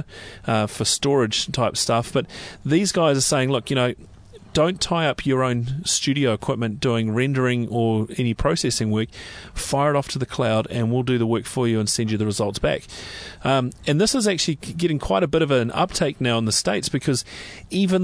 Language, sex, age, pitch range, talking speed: English, male, 30-49, 110-140 Hz, 210 wpm